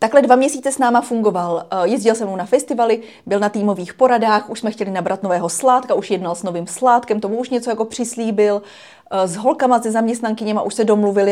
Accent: native